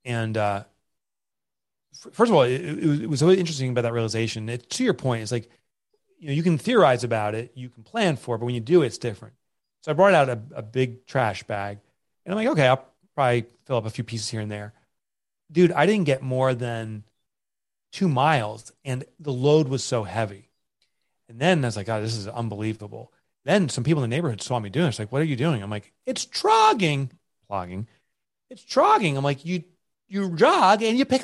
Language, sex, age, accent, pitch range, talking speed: English, male, 30-49, American, 115-170 Hz, 225 wpm